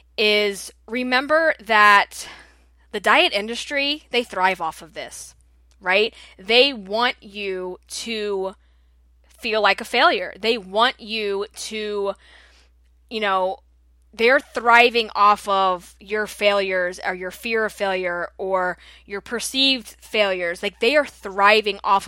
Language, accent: English, American